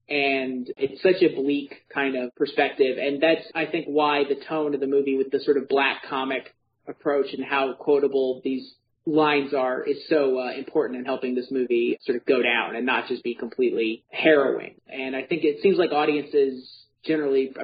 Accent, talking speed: American, 195 wpm